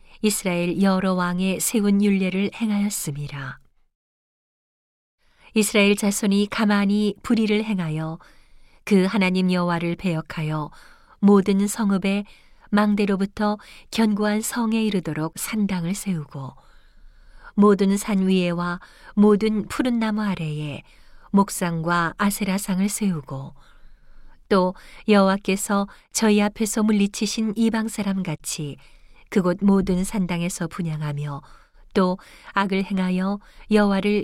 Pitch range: 175-210 Hz